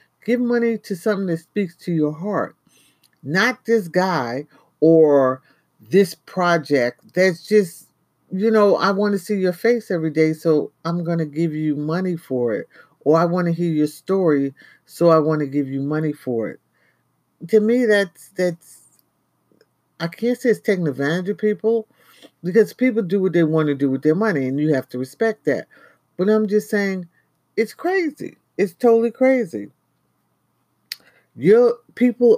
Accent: American